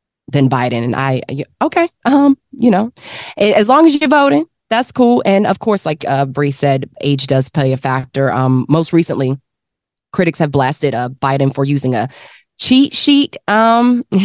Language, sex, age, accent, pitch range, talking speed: English, female, 20-39, American, 135-205 Hz, 175 wpm